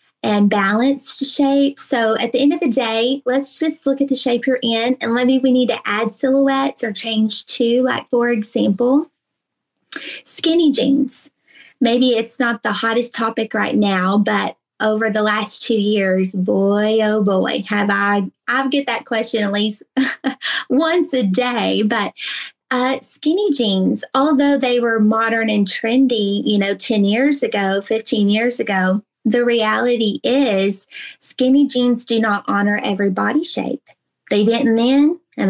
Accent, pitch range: American, 210-265 Hz